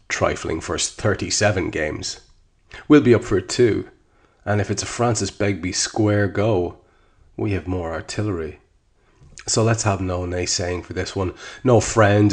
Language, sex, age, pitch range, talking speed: English, male, 30-49, 90-110 Hz, 155 wpm